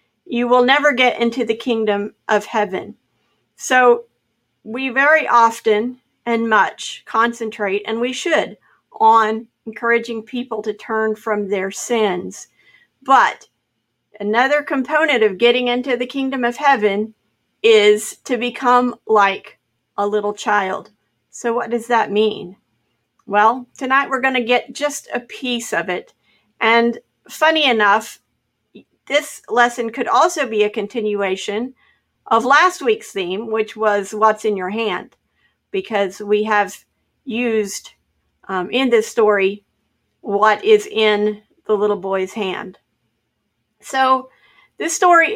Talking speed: 130 wpm